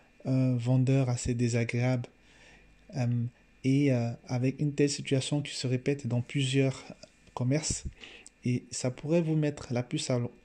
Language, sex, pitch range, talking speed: French, male, 125-150 Hz, 120 wpm